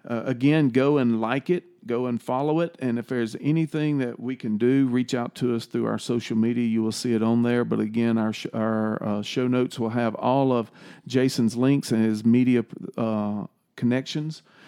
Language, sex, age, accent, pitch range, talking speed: English, male, 40-59, American, 115-140 Hz, 210 wpm